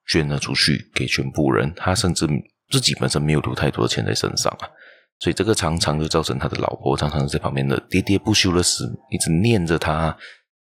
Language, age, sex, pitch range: Chinese, 30-49, male, 75-95 Hz